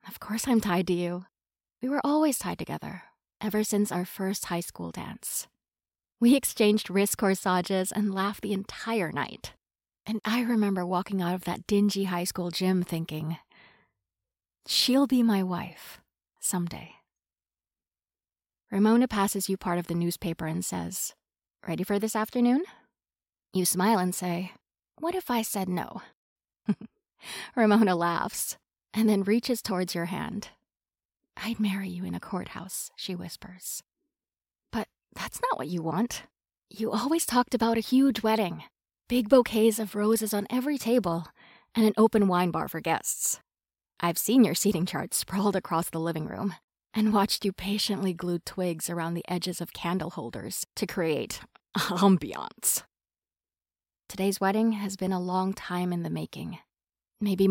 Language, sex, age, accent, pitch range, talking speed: English, female, 30-49, American, 175-220 Hz, 150 wpm